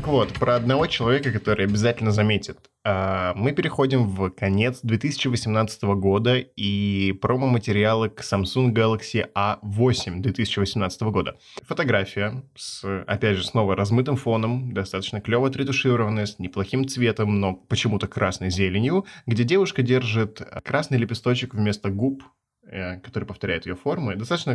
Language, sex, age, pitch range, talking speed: Russian, male, 20-39, 105-130 Hz, 125 wpm